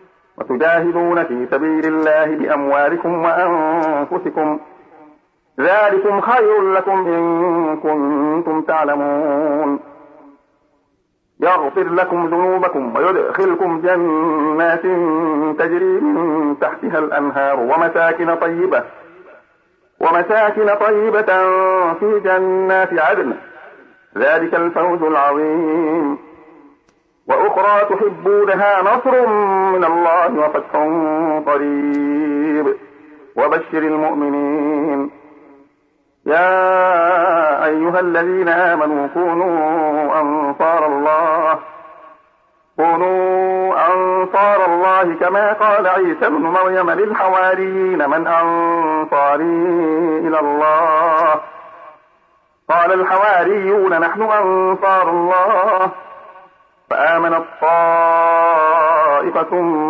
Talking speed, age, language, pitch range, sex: 65 wpm, 50-69, Arabic, 155-185 Hz, male